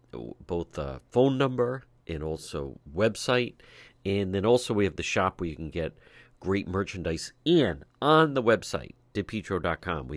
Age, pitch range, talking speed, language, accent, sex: 50-69, 80-120 Hz, 155 wpm, English, American, male